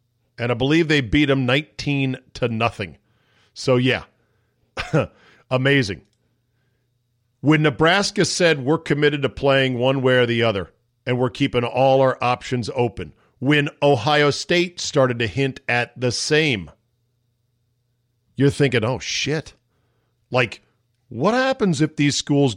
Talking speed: 135 wpm